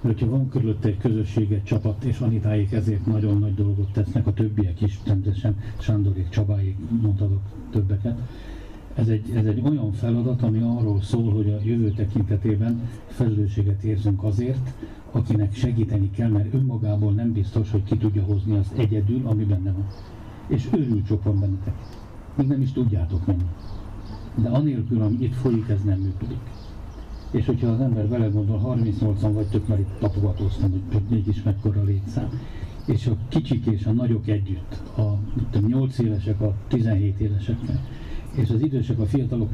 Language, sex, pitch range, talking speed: Hungarian, male, 105-120 Hz, 160 wpm